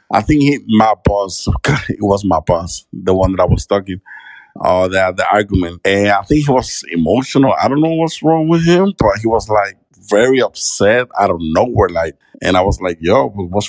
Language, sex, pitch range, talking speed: Spanish, male, 95-120 Hz, 220 wpm